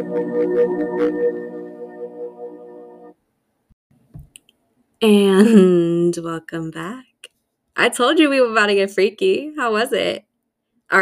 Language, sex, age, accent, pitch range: English, female, 20-39, American, 160-215 Hz